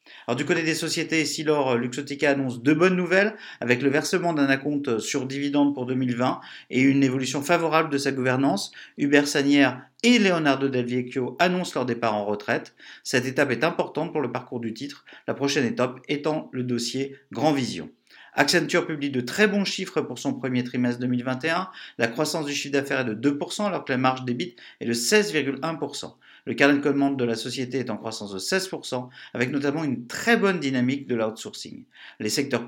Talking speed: 190 wpm